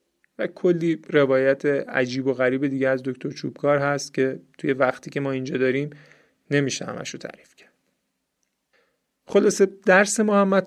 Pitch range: 130-170 Hz